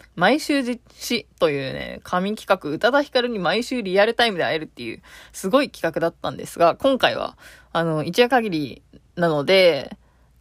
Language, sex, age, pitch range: Japanese, female, 20-39, 155-210 Hz